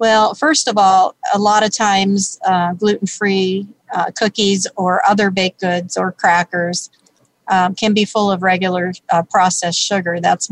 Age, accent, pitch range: 50-69, American, 180-210 Hz